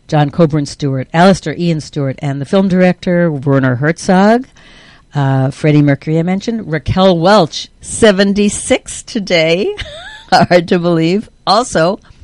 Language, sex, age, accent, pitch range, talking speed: English, female, 60-79, American, 135-175 Hz, 125 wpm